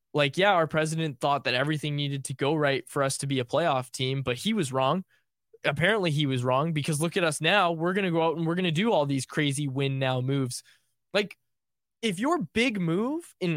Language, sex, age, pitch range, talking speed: English, male, 20-39, 145-205 Hz, 235 wpm